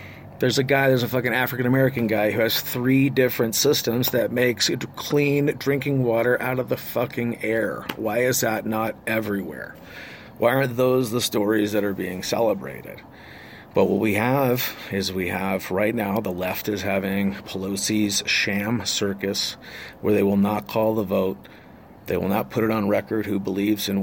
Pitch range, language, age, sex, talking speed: 100-120 Hz, English, 40-59, male, 175 wpm